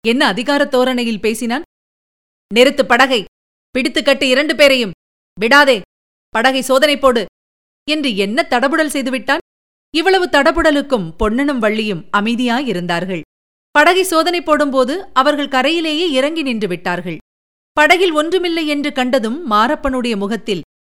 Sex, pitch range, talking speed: female, 215-290 Hz, 105 wpm